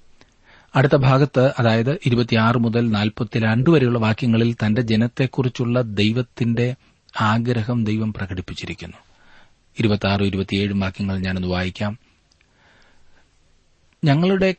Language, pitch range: Malayalam, 95-140 Hz